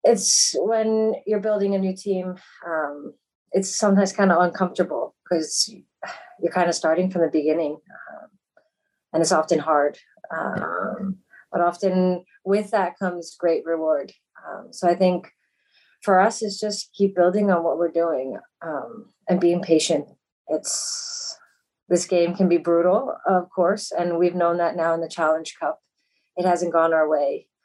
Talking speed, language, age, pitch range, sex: 160 wpm, English, 30-49, 165-190 Hz, female